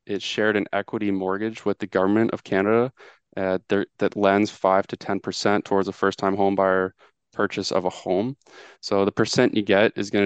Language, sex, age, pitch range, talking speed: English, male, 20-39, 95-110 Hz, 185 wpm